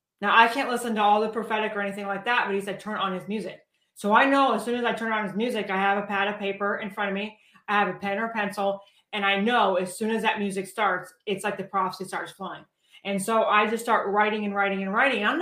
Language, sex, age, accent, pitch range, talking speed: English, female, 30-49, American, 195-230 Hz, 280 wpm